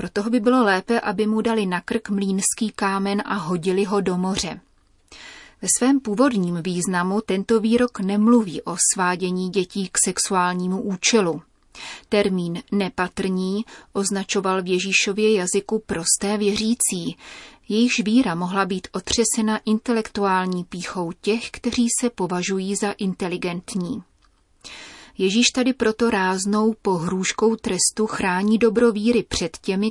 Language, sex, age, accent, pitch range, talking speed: Czech, female, 30-49, native, 185-220 Hz, 120 wpm